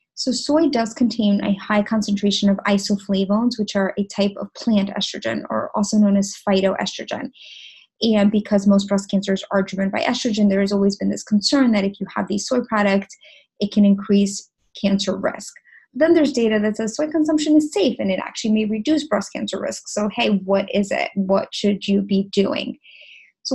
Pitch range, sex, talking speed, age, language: 200-250 Hz, female, 195 wpm, 20-39, English